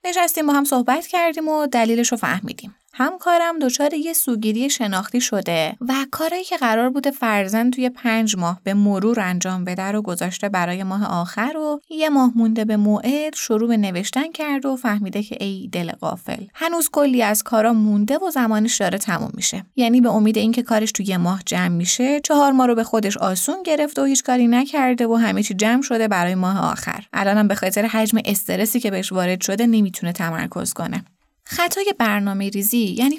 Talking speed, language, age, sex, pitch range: 190 wpm, Persian, 20-39, female, 200-265 Hz